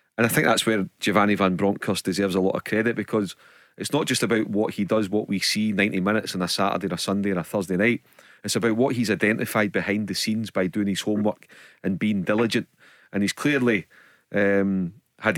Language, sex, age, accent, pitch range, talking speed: English, male, 30-49, British, 100-115 Hz, 220 wpm